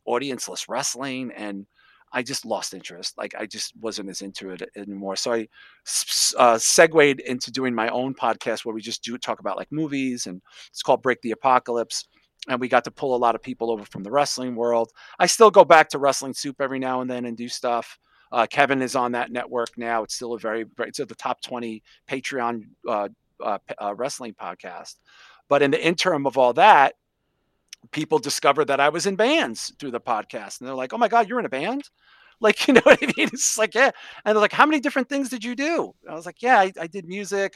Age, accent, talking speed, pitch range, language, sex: 40-59, American, 230 wpm, 120-155 Hz, English, male